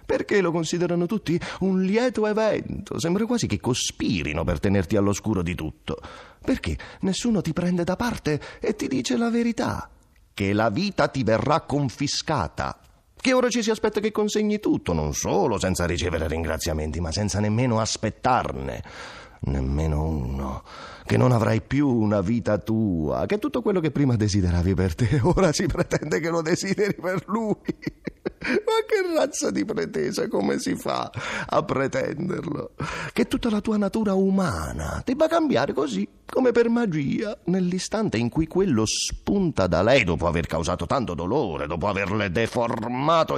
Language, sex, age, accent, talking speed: Italian, male, 30-49, native, 155 wpm